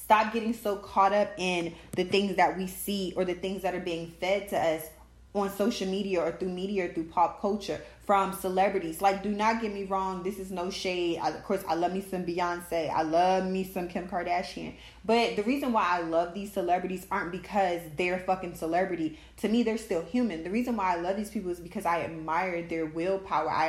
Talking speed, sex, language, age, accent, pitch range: 225 wpm, female, English, 10-29, American, 170-200 Hz